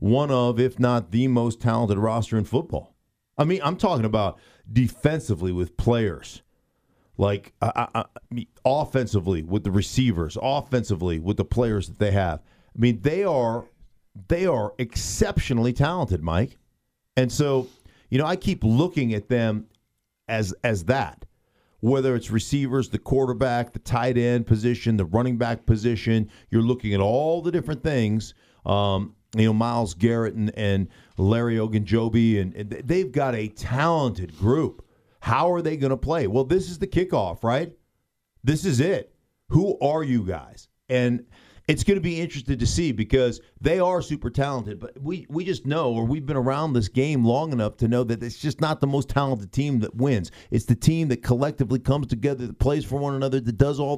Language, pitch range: English, 110-140 Hz